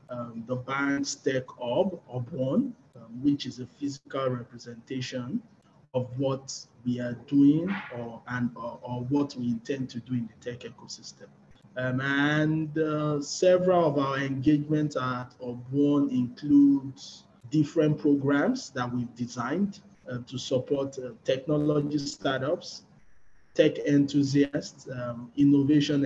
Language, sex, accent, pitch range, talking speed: English, male, Nigerian, 125-145 Hz, 125 wpm